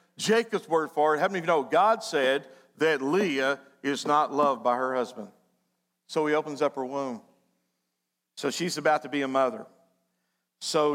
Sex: male